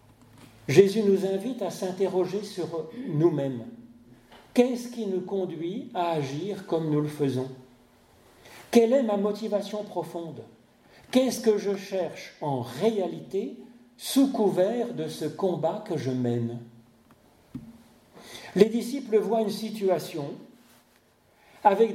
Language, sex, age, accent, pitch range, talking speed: French, male, 40-59, French, 150-220 Hz, 115 wpm